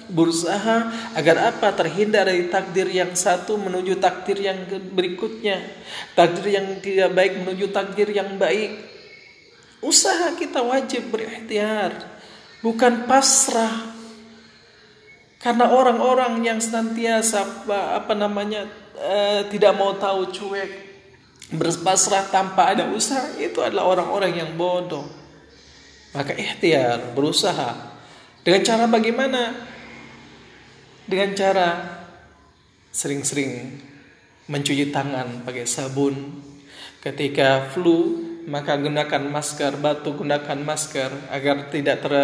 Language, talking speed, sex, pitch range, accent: Indonesian, 100 wpm, male, 140-205 Hz, native